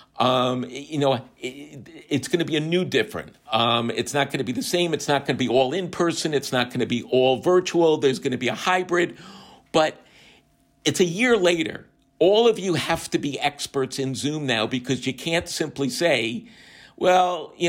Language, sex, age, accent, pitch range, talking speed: English, male, 50-69, American, 135-180 Hz, 205 wpm